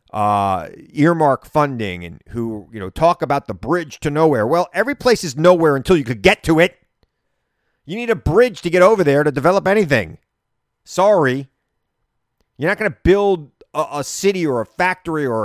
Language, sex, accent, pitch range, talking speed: English, male, American, 115-170 Hz, 185 wpm